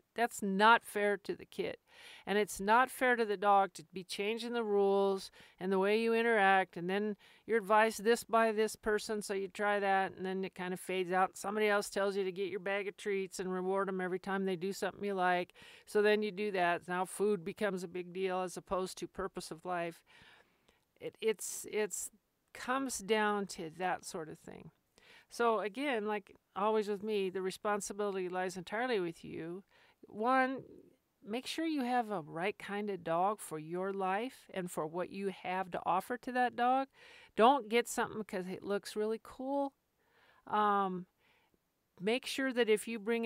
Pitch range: 190-235 Hz